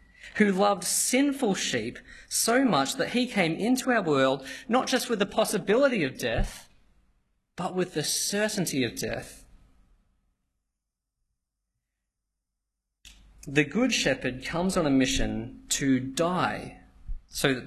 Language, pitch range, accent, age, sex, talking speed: English, 130-210 Hz, Australian, 20-39, male, 120 wpm